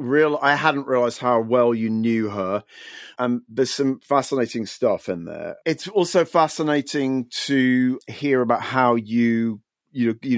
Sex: male